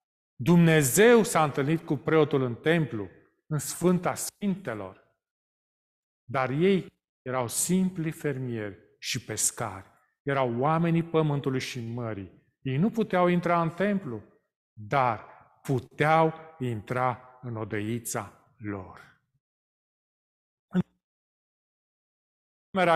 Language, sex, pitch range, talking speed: Romanian, male, 135-195 Hz, 90 wpm